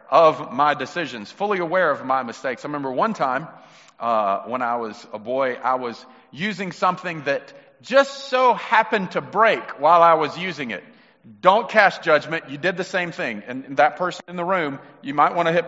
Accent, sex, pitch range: American, male, 130-170 Hz